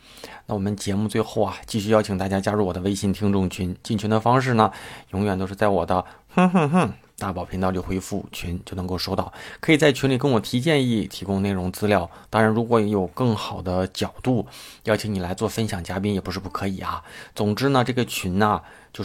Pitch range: 95-110 Hz